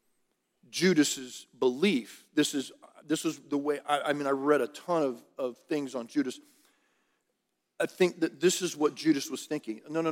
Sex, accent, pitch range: male, American, 150-210 Hz